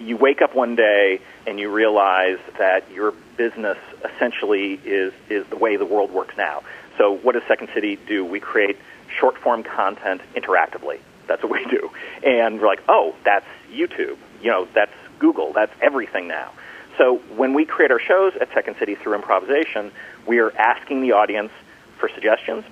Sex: male